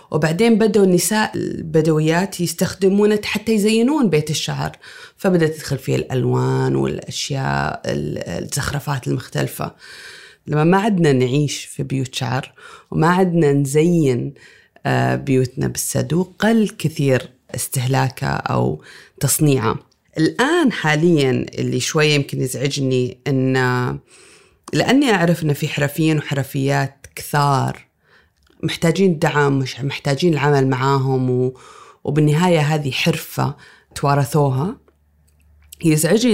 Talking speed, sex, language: 95 wpm, female, Arabic